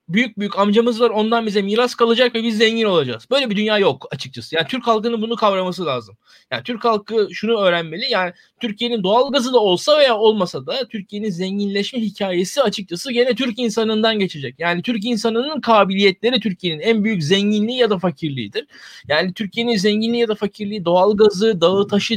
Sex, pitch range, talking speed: male, 190-240 Hz, 175 wpm